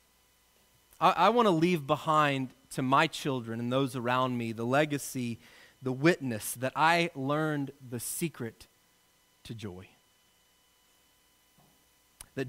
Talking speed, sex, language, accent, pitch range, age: 120 wpm, male, English, American, 115-165 Hz, 30-49